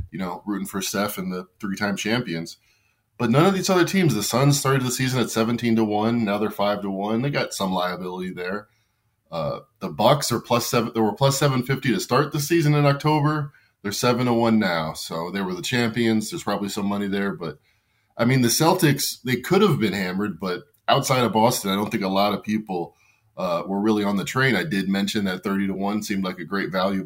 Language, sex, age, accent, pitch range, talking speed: English, male, 20-39, American, 100-125 Hz, 230 wpm